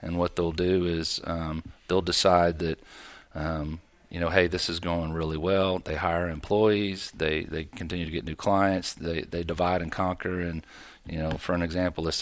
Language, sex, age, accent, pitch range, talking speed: English, male, 40-59, American, 80-90 Hz, 195 wpm